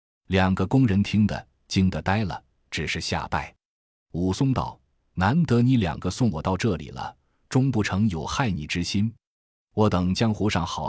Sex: male